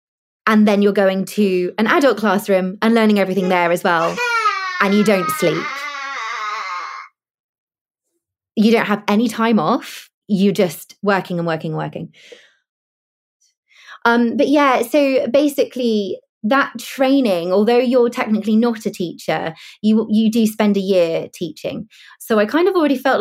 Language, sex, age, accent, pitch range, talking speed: English, female, 20-39, British, 180-235 Hz, 145 wpm